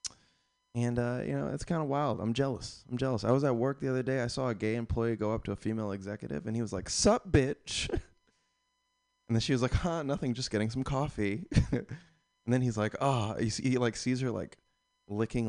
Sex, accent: male, American